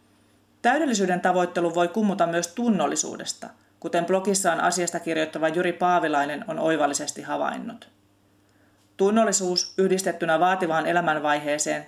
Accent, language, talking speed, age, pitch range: native, Finnish, 95 wpm, 30-49, 145-190 Hz